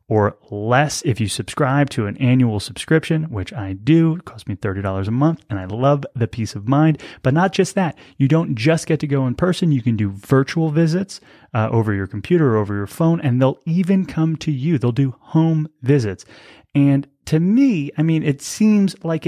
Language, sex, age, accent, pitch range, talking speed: English, male, 30-49, American, 115-160 Hz, 210 wpm